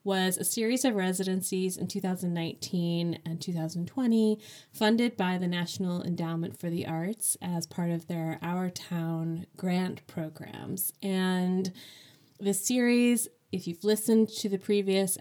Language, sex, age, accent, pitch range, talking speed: English, female, 20-39, American, 170-195 Hz, 135 wpm